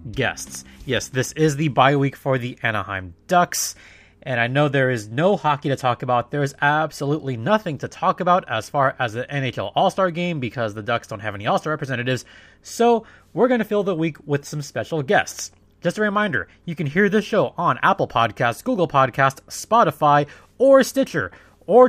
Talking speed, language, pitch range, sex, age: 195 wpm, English, 125-170 Hz, male, 20-39